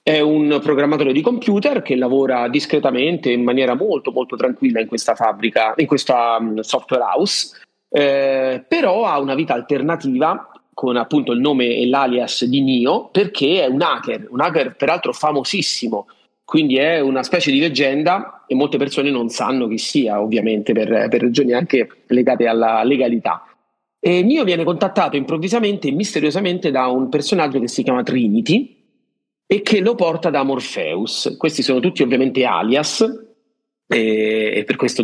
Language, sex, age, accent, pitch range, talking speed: Italian, male, 30-49, native, 125-180 Hz, 155 wpm